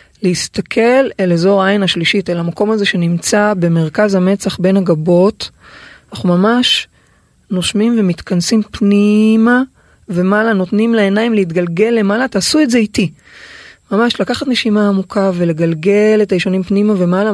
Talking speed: 125 wpm